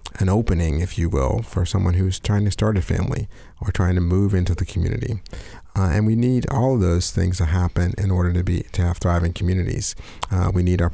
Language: English